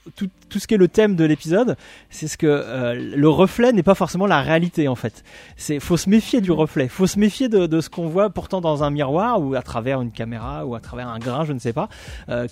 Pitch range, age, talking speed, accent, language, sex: 130-180 Hz, 30-49, 265 wpm, French, French, male